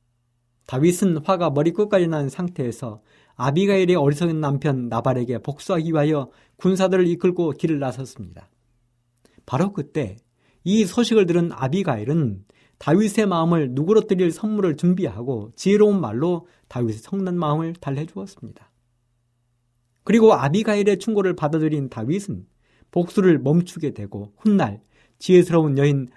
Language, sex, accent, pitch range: Korean, male, native, 120-180 Hz